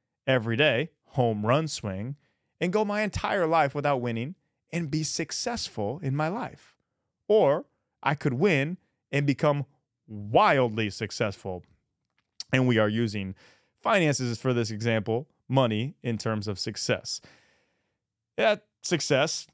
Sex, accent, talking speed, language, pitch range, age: male, American, 125 wpm, English, 105-150 Hz, 30-49